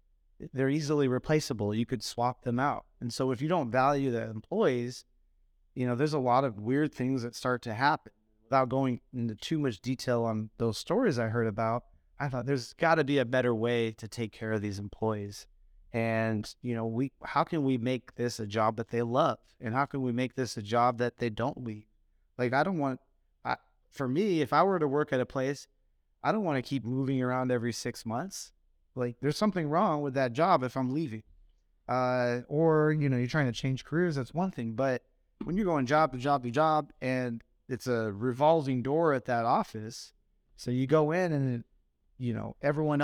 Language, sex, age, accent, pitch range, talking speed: English, male, 30-49, American, 115-145 Hz, 210 wpm